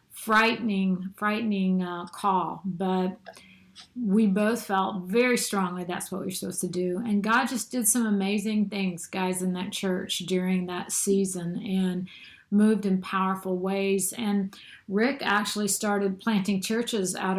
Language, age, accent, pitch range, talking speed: English, 50-69, American, 185-210 Hz, 150 wpm